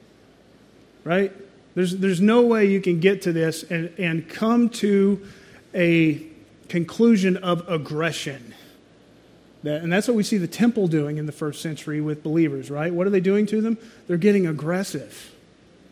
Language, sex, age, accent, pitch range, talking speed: English, male, 30-49, American, 165-210 Hz, 160 wpm